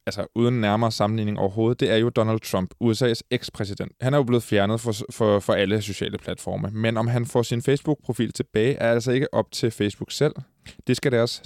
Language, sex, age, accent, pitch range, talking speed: Danish, male, 20-39, native, 105-130 Hz, 210 wpm